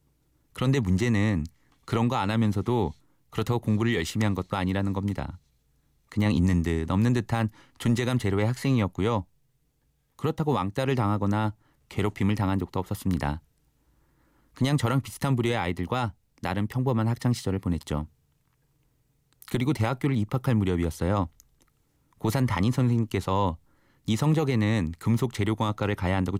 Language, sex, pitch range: Korean, male, 95-120 Hz